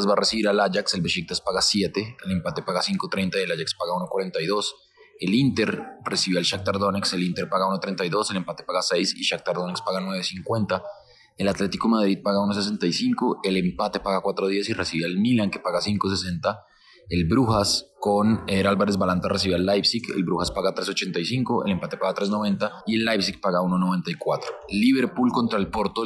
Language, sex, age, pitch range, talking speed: Spanish, male, 20-39, 95-115 Hz, 180 wpm